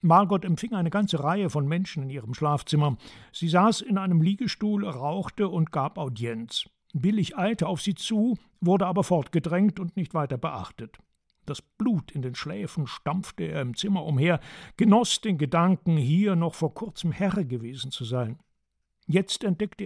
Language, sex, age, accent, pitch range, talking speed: German, male, 60-79, German, 150-195 Hz, 165 wpm